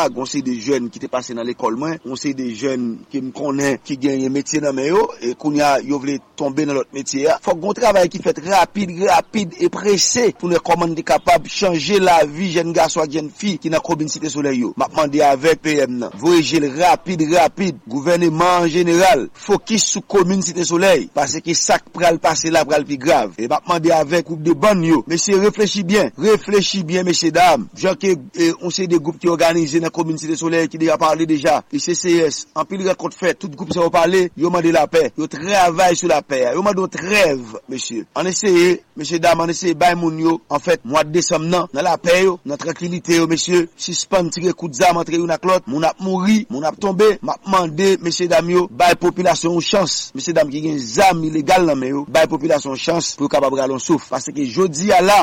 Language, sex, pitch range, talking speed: English, male, 155-190 Hz, 205 wpm